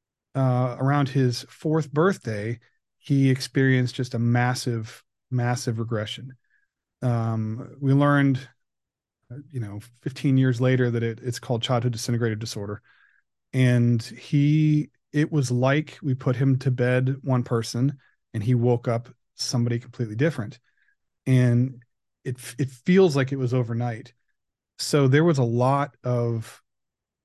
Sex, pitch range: male, 115-135 Hz